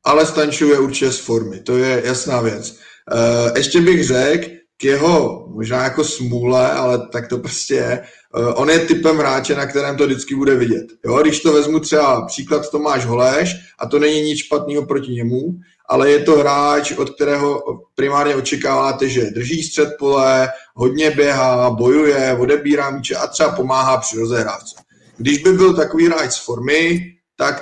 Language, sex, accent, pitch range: Czech, male, native, 130-155 Hz